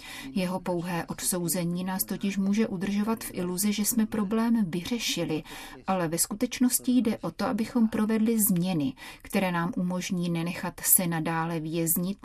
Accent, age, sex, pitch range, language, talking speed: native, 30-49, female, 170-215 Hz, Czech, 140 wpm